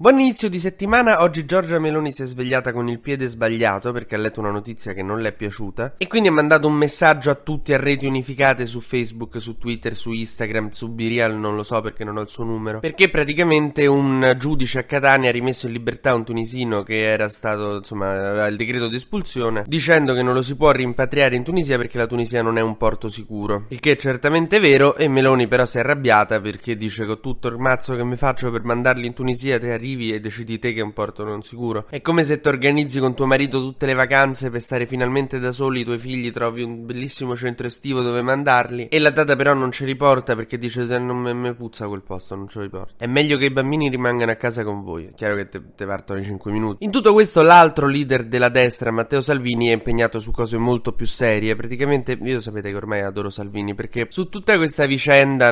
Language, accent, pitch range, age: Italian, native, 110-135 Hz, 20-39